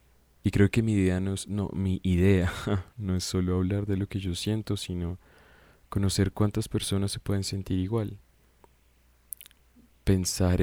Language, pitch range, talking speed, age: Spanish, 85-100 Hz, 160 wpm, 20-39